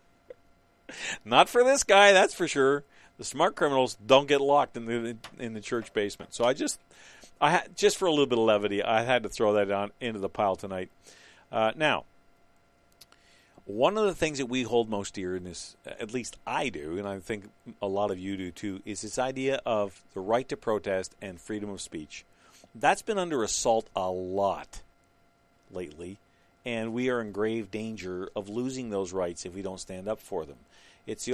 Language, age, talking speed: English, 50-69, 200 wpm